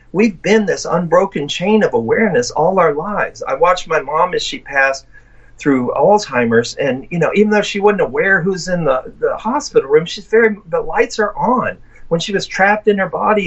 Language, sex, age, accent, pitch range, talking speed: English, male, 50-69, American, 160-225 Hz, 205 wpm